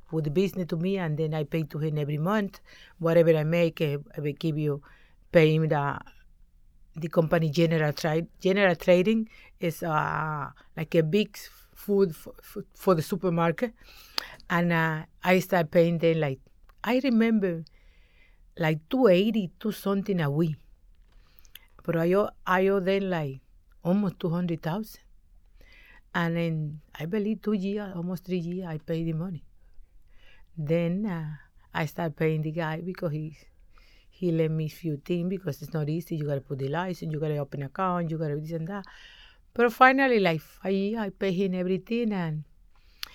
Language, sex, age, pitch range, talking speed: English, female, 50-69, 155-195 Hz, 170 wpm